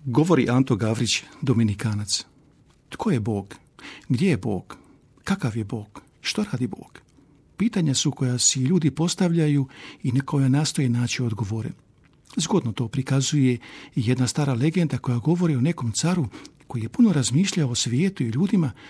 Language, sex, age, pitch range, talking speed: Croatian, male, 50-69, 120-160 Hz, 150 wpm